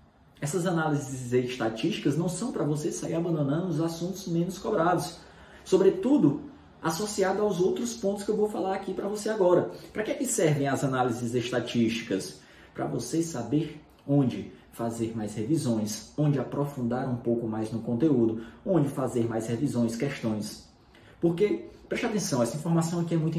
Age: 20-39